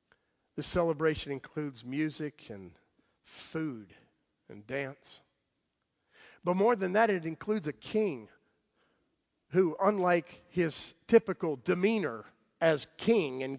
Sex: male